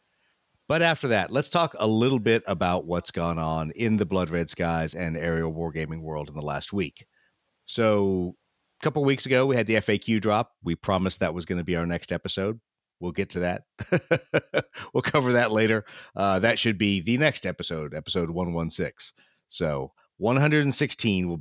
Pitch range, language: 85-110 Hz, English